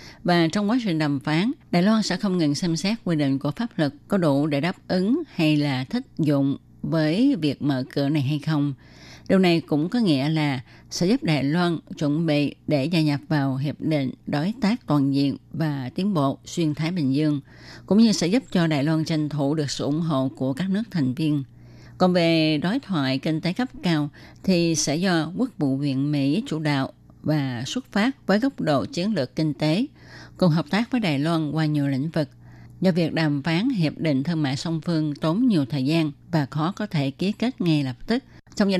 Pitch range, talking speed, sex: 145-175 Hz, 220 wpm, female